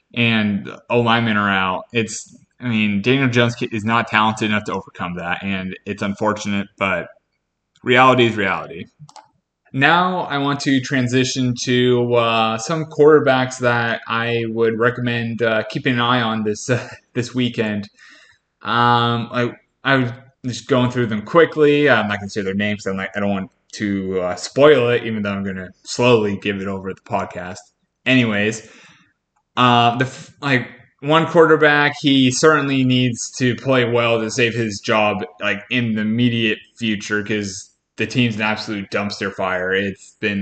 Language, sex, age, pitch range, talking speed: English, male, 20-39, 105-125 Hz, 160 wpm